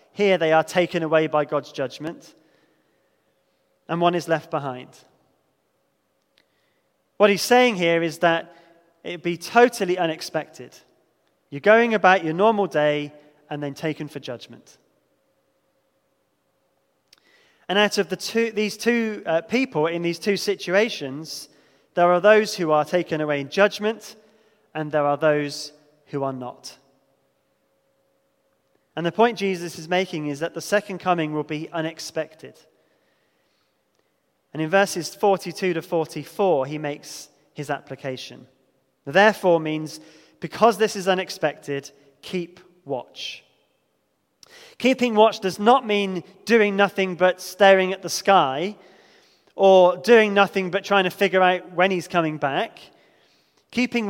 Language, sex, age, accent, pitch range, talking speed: English, male, 20-39, British, 150-195 Hz, 135 wpm